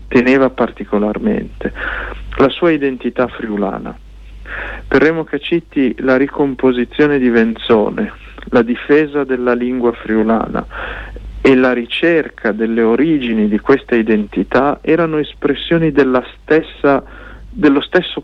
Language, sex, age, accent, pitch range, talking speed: Italian, male, 50-69, native, 120-155 Hz, 100 wpm